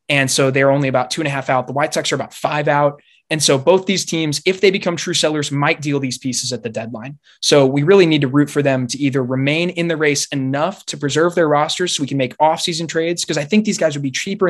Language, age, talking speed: English, 20-39, 275 wpm